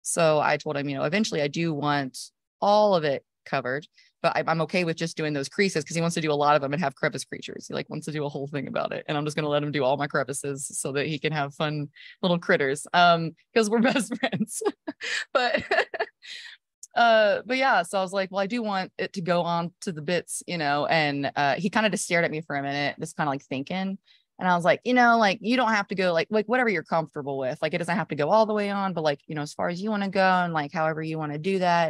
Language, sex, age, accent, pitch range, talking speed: English, female, 20-39, American, 155-210 Hz, 290 wpm